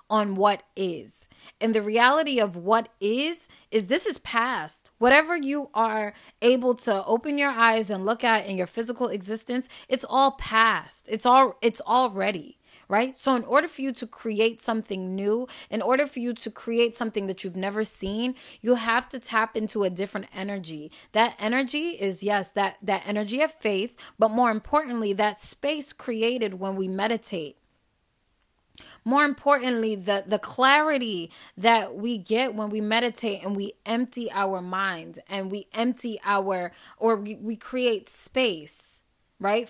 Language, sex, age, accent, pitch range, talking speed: English, female, 10-29, American, 205-250 Hz, 165 wpm